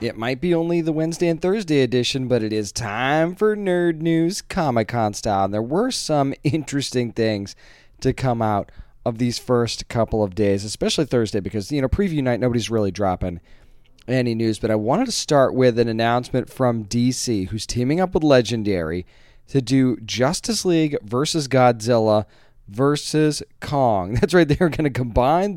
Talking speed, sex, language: 175 wpm, male, English